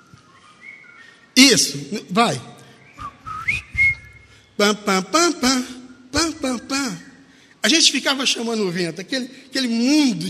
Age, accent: 60-79, Brazilian